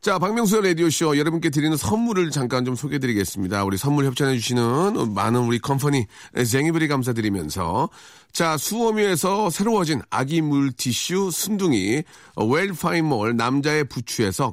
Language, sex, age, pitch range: Korean, male, 40-59, 135-190 Hz